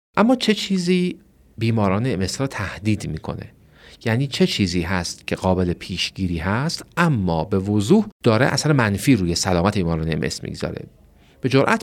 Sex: male